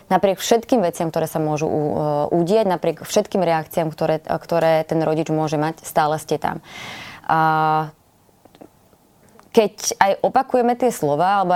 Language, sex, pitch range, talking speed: Slovak, female, 160-200 Hz, 130 wpm